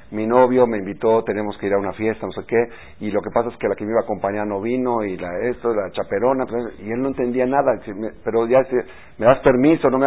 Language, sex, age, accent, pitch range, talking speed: Spanish, male, 50-69, Mexican, 105-130 Hz, 270 wpm